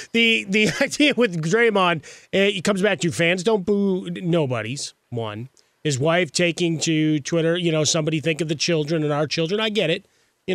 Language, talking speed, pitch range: English, 190 wpm, 135-170 Hz